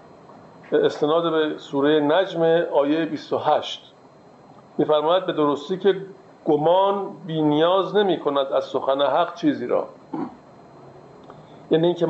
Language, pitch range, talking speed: Persian, 145-175 Hz, 115 wpm